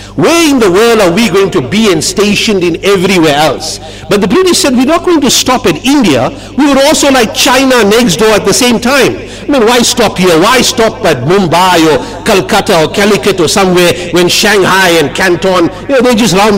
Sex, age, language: male, 60-79, English